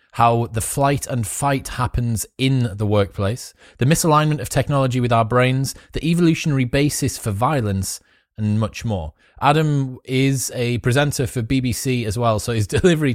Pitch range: 105-130 Hz